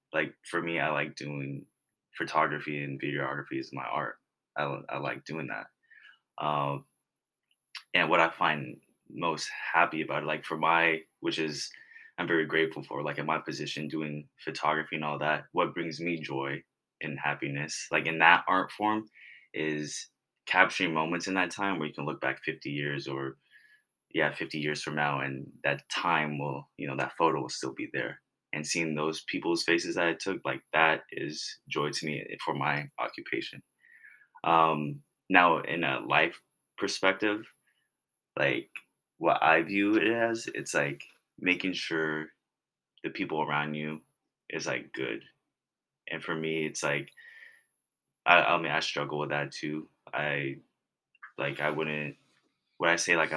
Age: 20-39